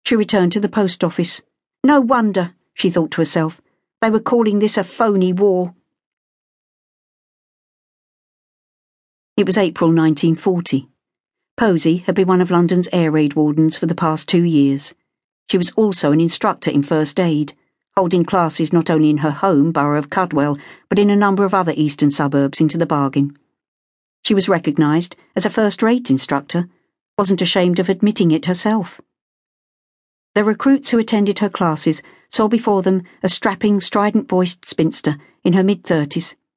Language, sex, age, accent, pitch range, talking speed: English, female, 50-69, British, 160-200 Hz, 155 wpm